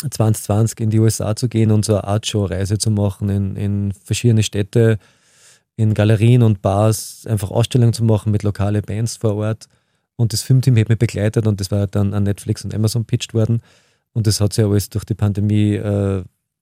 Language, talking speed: German, 195 wpm